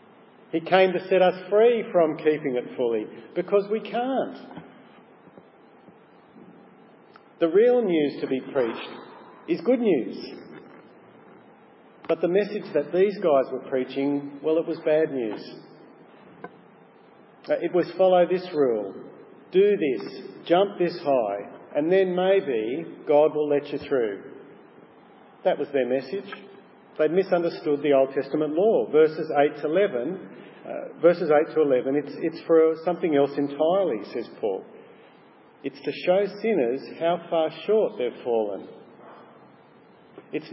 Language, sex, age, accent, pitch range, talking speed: English, male, 50-69, Australian, 150-195 Hz, 135 wpm